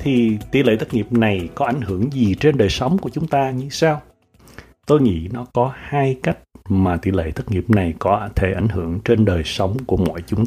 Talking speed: 230 wpm